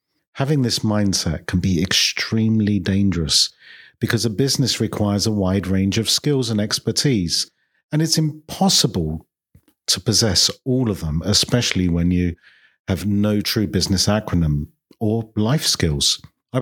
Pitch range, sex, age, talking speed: 95-115 Hz, male, 40-59, 135 wpm